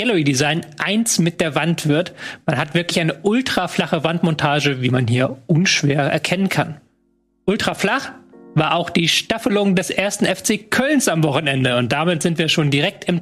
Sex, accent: male, German